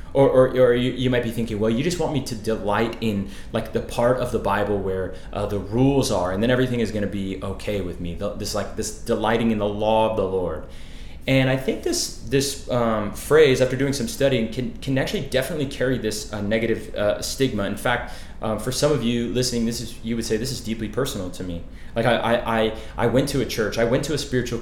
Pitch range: 100-130 Hz